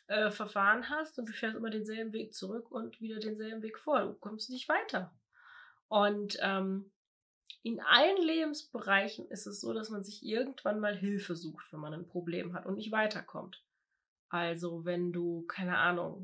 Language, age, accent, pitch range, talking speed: German, 20-39, German, 180-245 Hz, 175 wpm